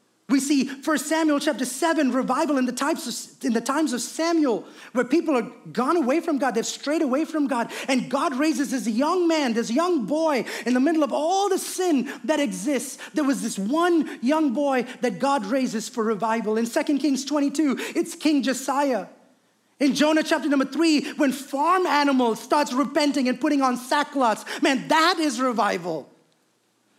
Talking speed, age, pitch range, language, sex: 180 wpm, 30-49, 250-310 Hz, English, male